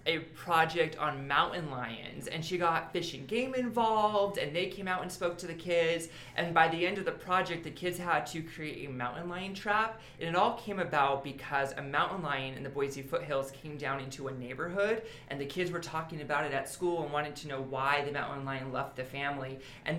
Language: English